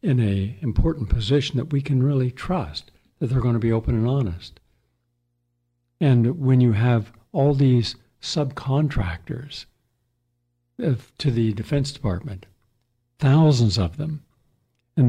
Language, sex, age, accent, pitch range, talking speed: English, male, 60-79, American, 115-135 Hz, 130 wpm